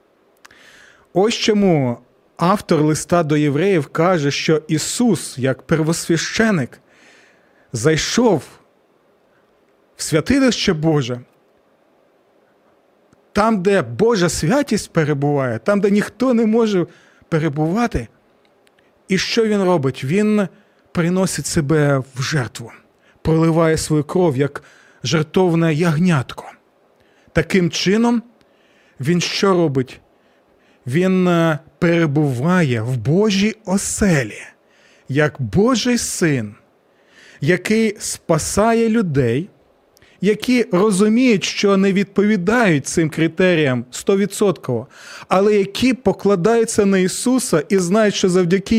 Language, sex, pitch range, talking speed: Ukrainian, male, 155-210 Hz, 90 wpm